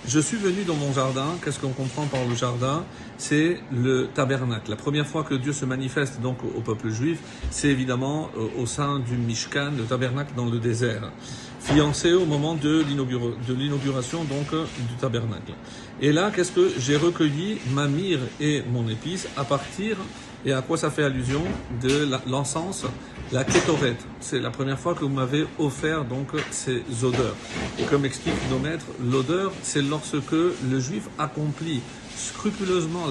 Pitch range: 125-155 Hz